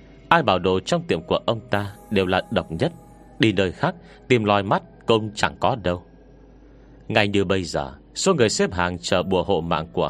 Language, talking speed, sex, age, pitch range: Vietnamese, 210 wpm, male, 30-49, 95-125 Hz